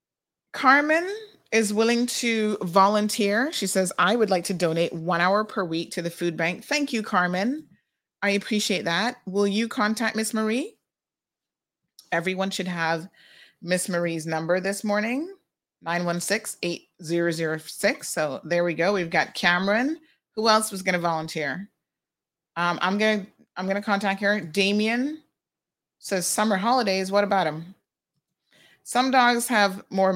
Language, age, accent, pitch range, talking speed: English, 30-49, American, 170-220 Hz, 140 wpm